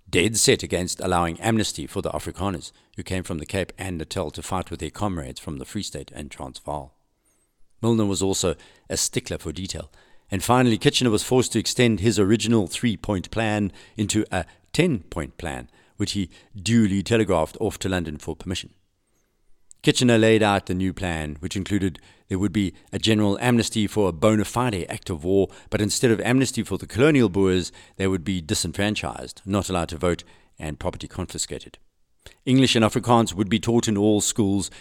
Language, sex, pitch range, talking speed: English, male, 85-110 Hz, 185 wpm